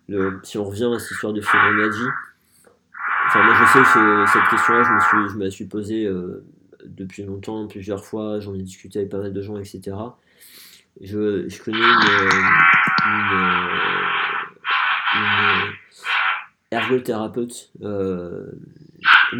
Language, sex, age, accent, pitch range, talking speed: French, male, 20-39, French, 95-110 Hz, 140 wpm